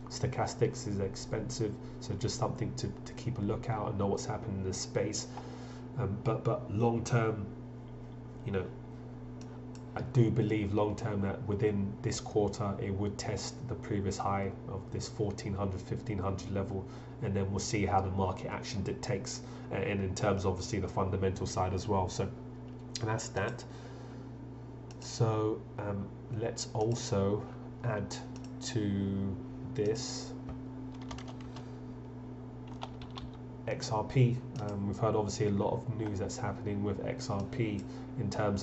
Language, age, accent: English, 30-49, British